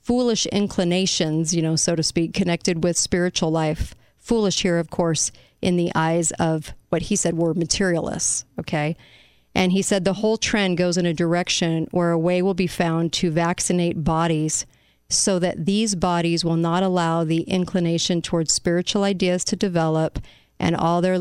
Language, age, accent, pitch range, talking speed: English, 40-59, American, 160-195 Hz, 175 wpm